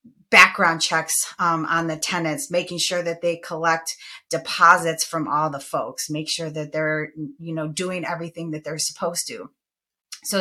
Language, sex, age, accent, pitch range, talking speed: English, female, 30-49, American, 155-180 Hz, 165 wpm